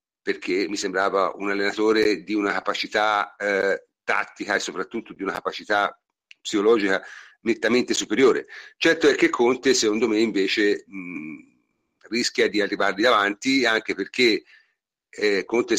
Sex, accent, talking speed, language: male, native, 130 wpm, Italian